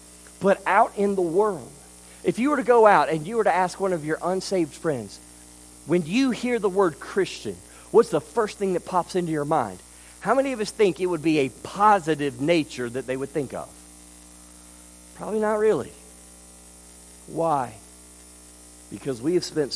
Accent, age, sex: American, 50-69, male